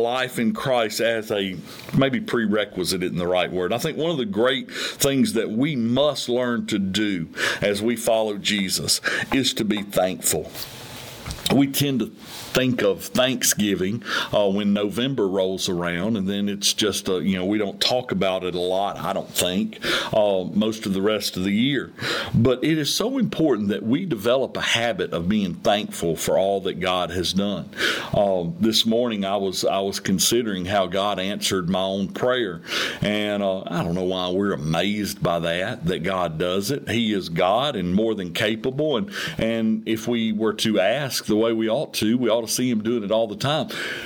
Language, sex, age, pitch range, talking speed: English, male, 50-69, 100-135 Hz, 195 wpm